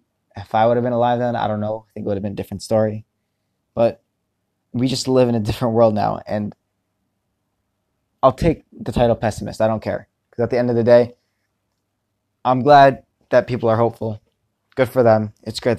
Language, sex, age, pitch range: English, male, 20-39, 105-120 Hz